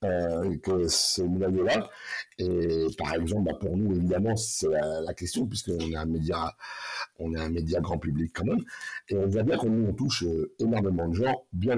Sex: male